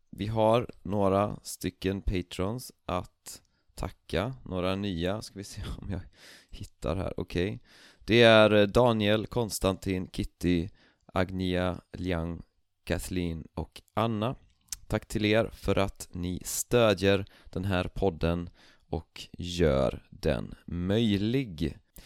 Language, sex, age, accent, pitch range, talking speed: Swedish, male, 30-49, native, 85-100 Hz, 115 wpm